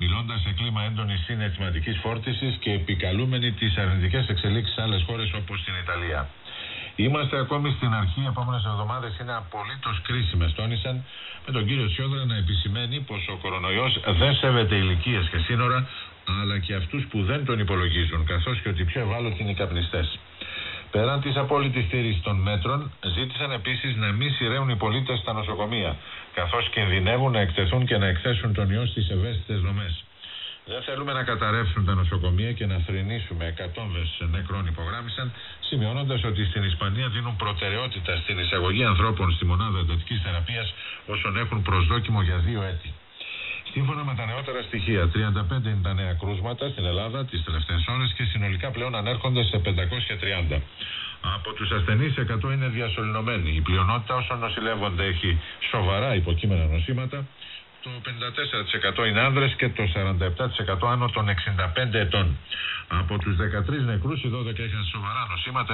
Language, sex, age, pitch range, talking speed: Italian, male, 50-69, 95-120 Hz, 155 wpm